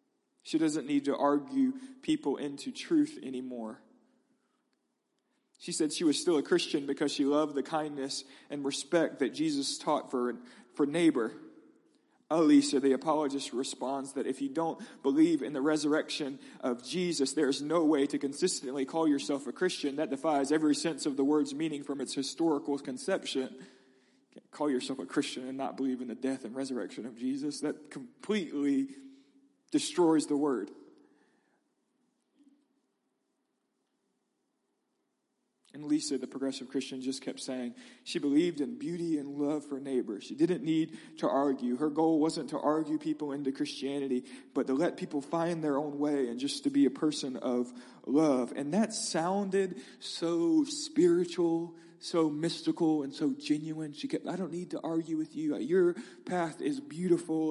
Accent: American